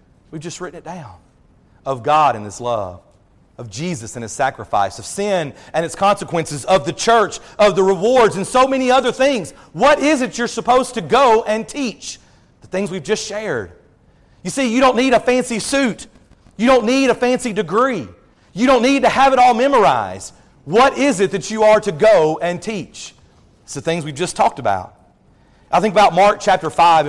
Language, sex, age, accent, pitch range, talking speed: English, male, 40-59, American, 150-215 Hz, 200 wpm